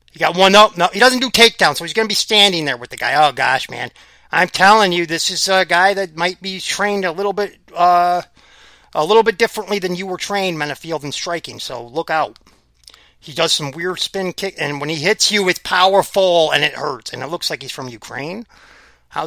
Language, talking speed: English, 235 wpm